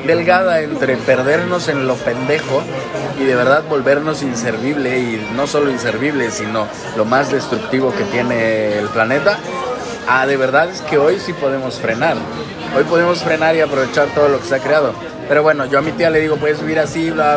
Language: Spanish